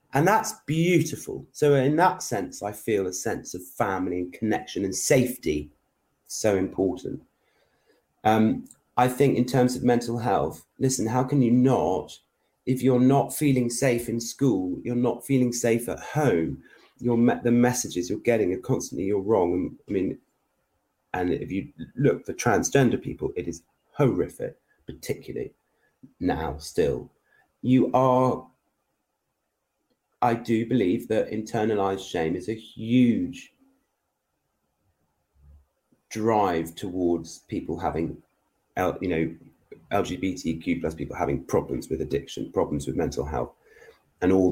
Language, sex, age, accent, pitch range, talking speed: English, male, 30-49, British, 85-125 Hz, 135 wpm